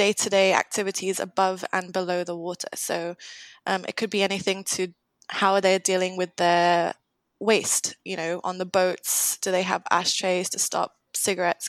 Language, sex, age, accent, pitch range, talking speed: English, female, 20-39, British, 185-215 Hz, 170 wpm